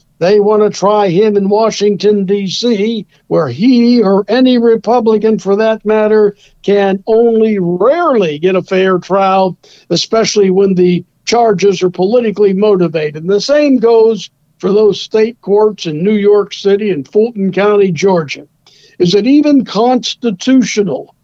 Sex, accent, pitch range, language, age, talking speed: male, American, 190-235 Hz, English, 60-79, 140 wpm